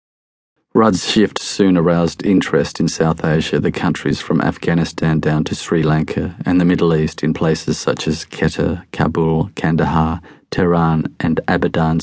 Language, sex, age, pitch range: English, male, 40-59, 80-85 Hz